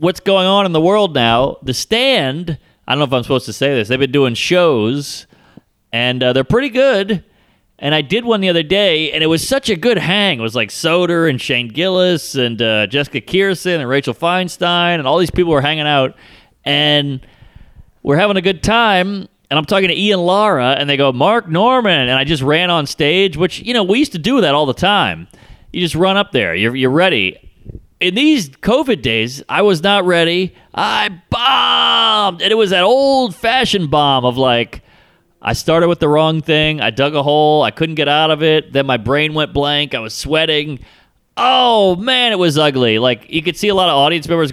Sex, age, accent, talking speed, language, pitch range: male, 30-49, American, 215 wpm, English, 130-185 Hz